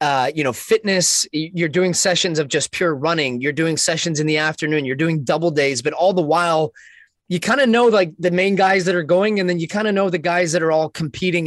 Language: English